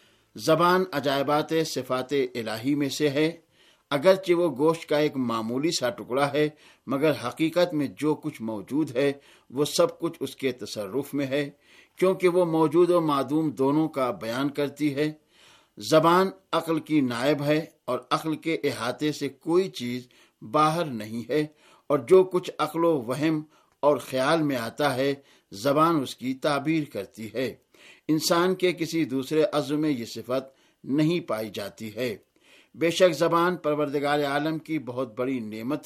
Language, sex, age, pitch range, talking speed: Urdu, male, 60-79, 135-165 Hz, 155 wpm